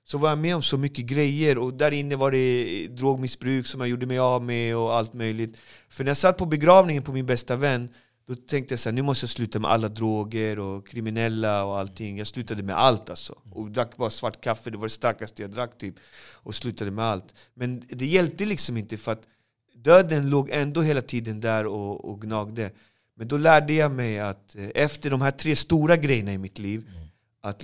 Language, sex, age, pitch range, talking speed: English, male, 30-49, 110-140 Hz, 220 wpm